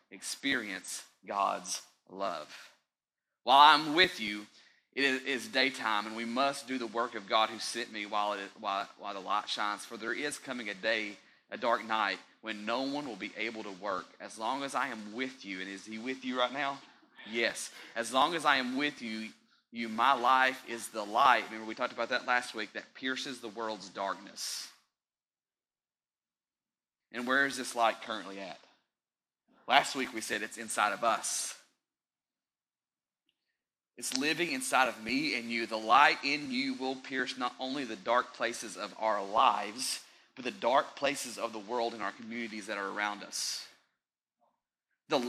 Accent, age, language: American, 30-49, English